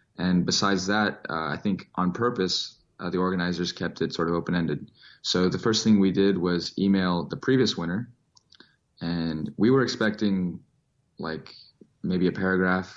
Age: 20-39